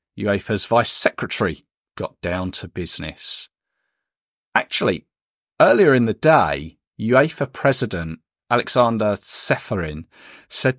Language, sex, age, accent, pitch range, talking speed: English, male, 40-59, British, 95-135 Hz, 95 wpm